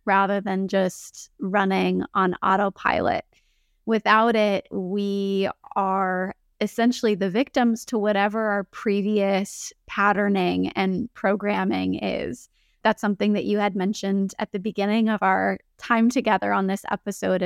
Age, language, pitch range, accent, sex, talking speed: 20-39, English, 195-215 Hz, American, female, 125 wpm